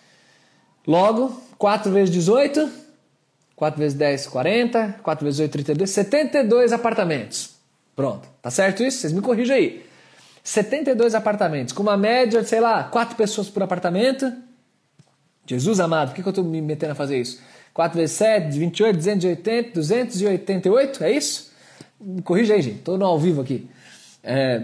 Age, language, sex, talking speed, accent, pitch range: 20-39, Portuguese, male, 155 wpm, Brazilian, 155-220 Hz